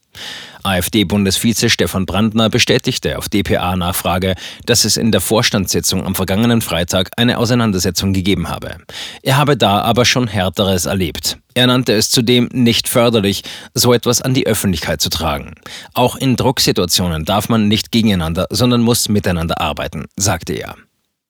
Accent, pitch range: German, 95-120 Hz